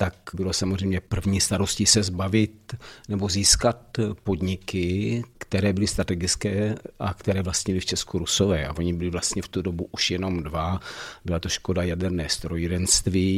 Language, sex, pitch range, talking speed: Czech, male, 90-100 Hz, 150 wpm